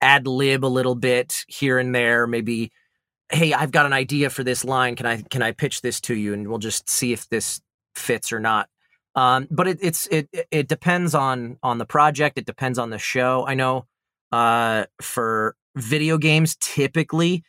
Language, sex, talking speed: English, male, 195 wpm